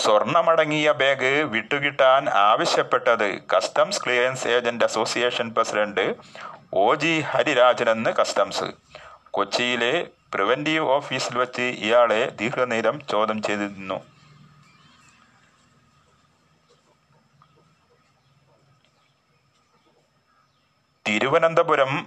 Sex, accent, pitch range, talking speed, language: male, native, 115-150 Hz, 60 wpm, Malayalam